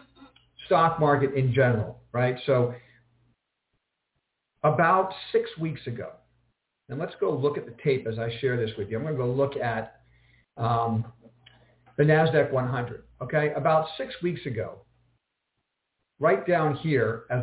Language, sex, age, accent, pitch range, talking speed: English, male, 50-69, American, 120-150 Hz, 145 wpm